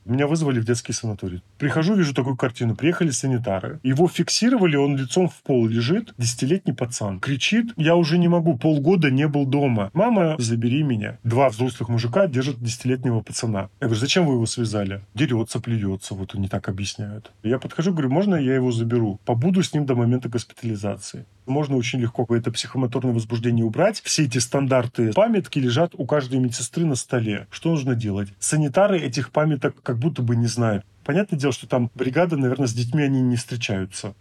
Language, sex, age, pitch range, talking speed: Russian, male, 30-49, 120-160 Hz, 180 wpm